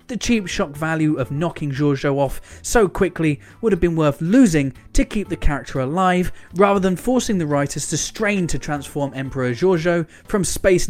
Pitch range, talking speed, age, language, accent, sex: 130-185 Hz, 180 wpm, 20-39, English, British, male